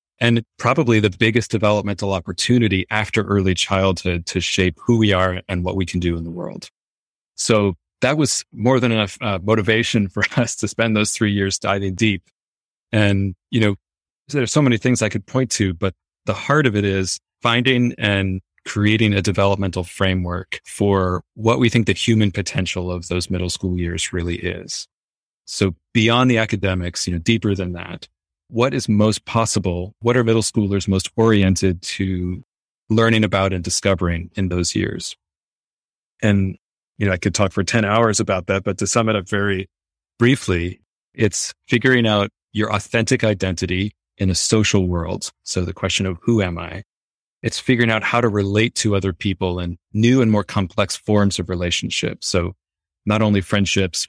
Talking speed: 175 wpm